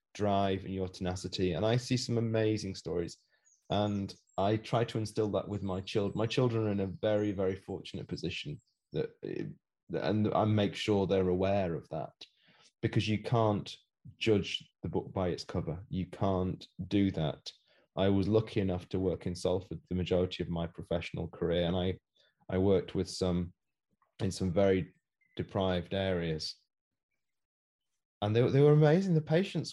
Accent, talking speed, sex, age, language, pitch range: British, 165 wpm, male, 20-39, English, 95-120 Hz